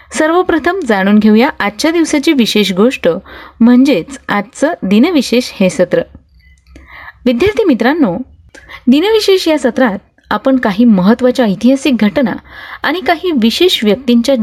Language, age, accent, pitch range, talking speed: Marathi, 30-49, native, 200-270 Hz, 110 wpm